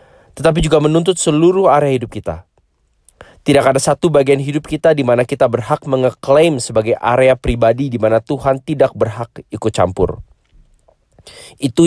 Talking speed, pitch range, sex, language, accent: 145 wpm, 115-150 Hz, male, English, Indonesian